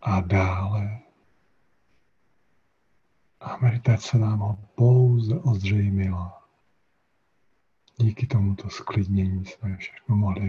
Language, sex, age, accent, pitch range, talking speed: Czech, male, 50-69, native, 100-115 Hz, 80 wpm